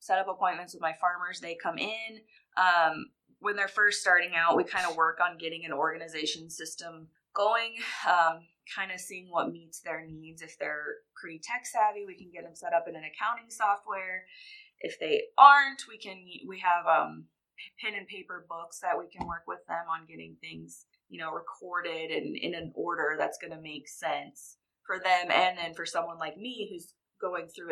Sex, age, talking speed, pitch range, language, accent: female, 20-39, 195 wpm, 160-190 Hz, English, American